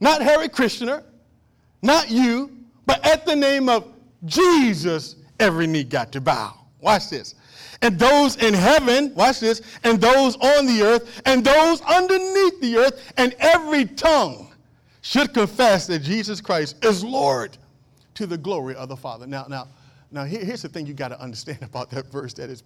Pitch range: 165-255 Hz